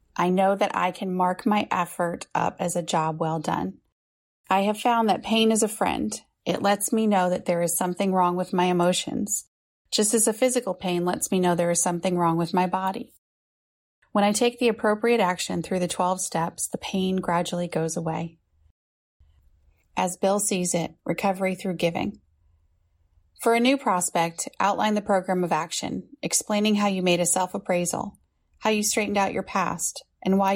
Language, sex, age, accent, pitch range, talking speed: English, female, 30-49, American, 170-200 Hz, 185 wpm